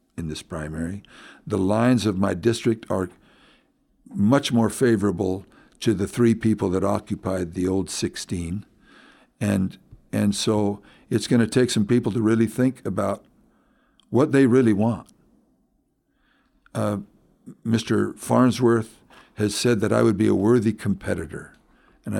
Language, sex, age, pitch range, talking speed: English, male, 60-79, 100-120 Hz, 140 wpm